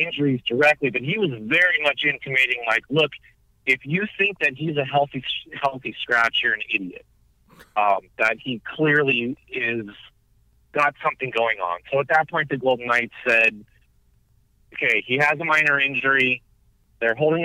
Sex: male